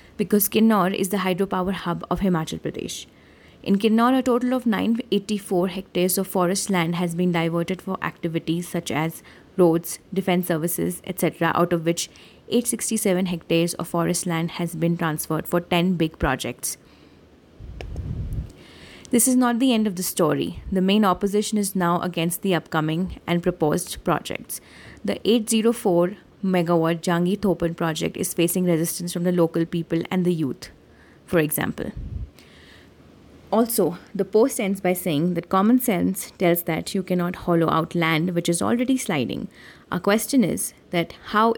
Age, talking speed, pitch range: 20-39, 155 wpm, 170-200 Hz